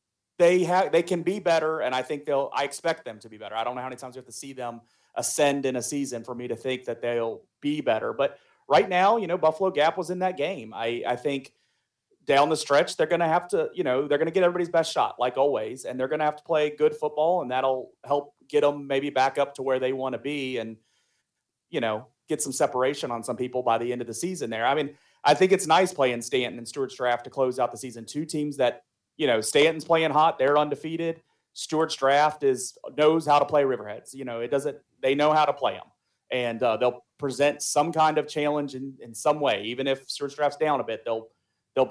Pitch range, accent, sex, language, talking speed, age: 125-155 Hz, American, male, English, 250 wpm, 30-49